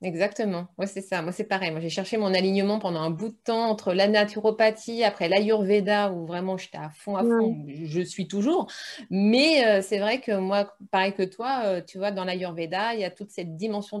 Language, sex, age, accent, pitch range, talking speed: French, female, 30-49, French, 185-225 Hz, 225 wpm